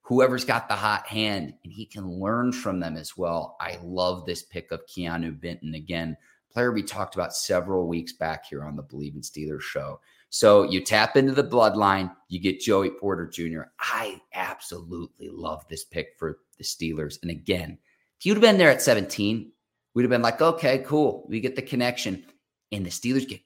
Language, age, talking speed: English, 30-49, 195 wpm